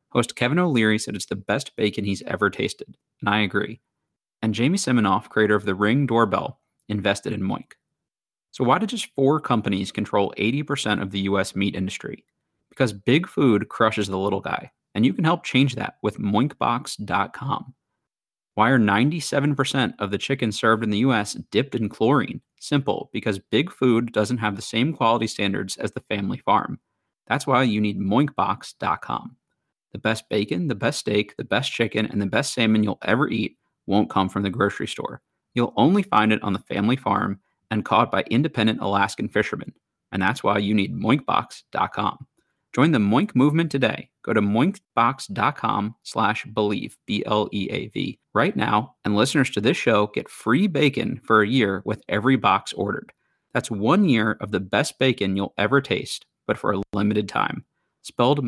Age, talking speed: 30-49, 175 wpm